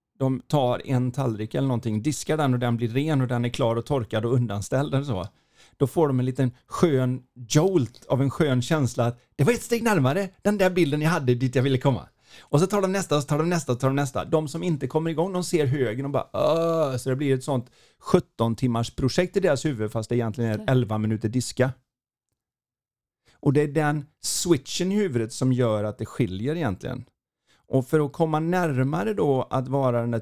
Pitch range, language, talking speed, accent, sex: 120-150 Hz, Swedish, 225 wpm, native, male